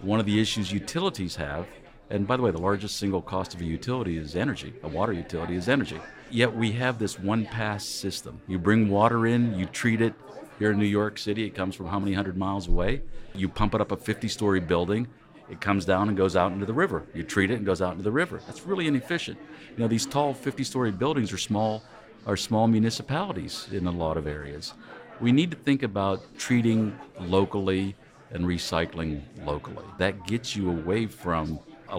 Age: 50-69